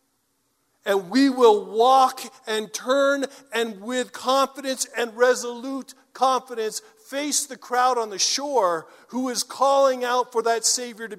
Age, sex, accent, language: 50-69, male, American, English